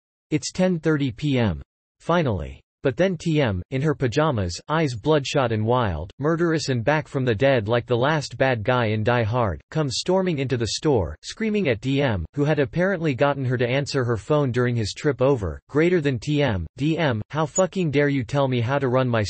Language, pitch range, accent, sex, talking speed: English, 115-150 Hz, American, male, 195 wpm